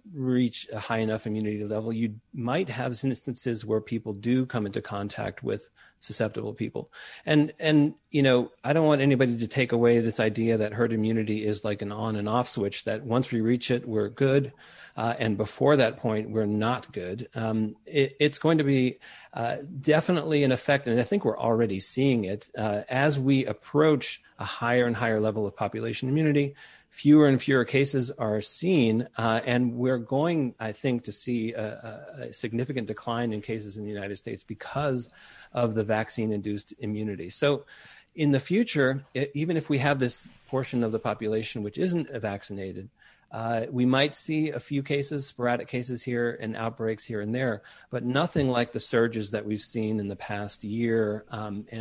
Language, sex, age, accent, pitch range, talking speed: English, male, 40-59, American, 110-135 Hz, 185 wpm